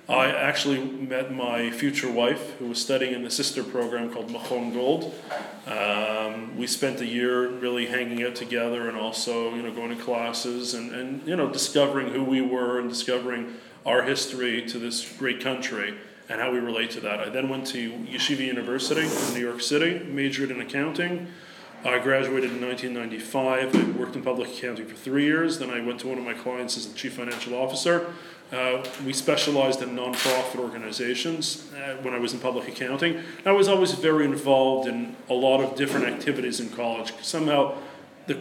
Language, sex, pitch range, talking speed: English, male, 120-135 Hz, 190 wpm